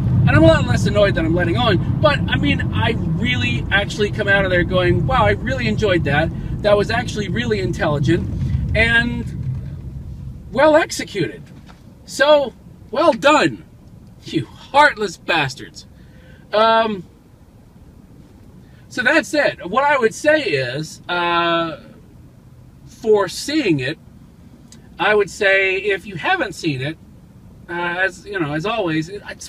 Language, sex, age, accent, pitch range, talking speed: English, male, 40-59, American, 140-225 Hz, 140 wpm